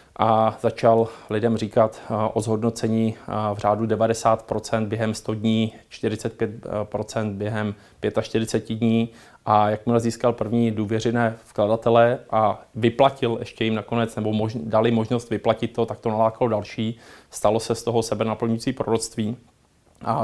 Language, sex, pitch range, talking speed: Czech, male, 110-115 Hz, 135 wpm